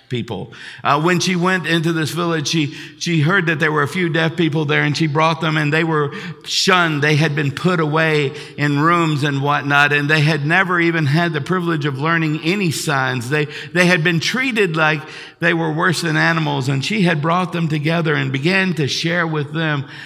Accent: American